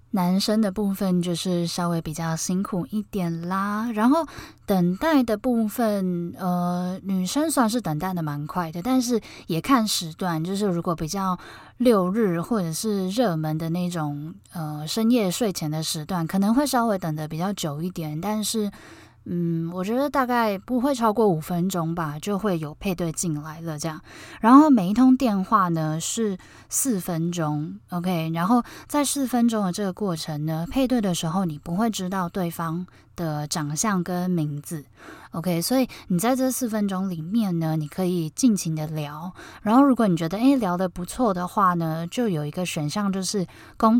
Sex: female